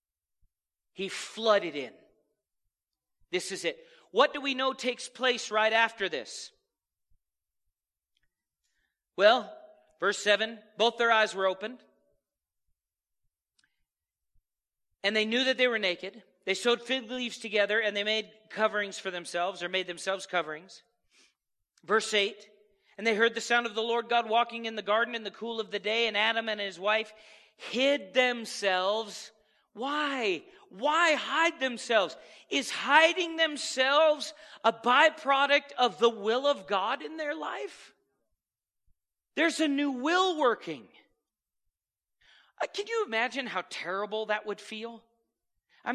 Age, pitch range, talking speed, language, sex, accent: 40-59, 190-245 Hz, 135 wpm, English, male, American